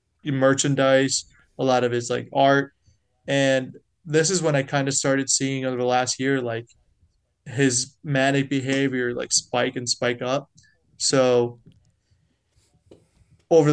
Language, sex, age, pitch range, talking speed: English, male, 20-39, 125-140 Hz, 135 wpm